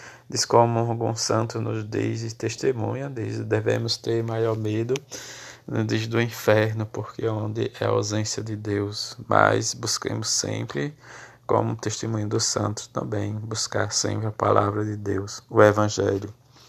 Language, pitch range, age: Portuguese, 105-115 Hz, 20-39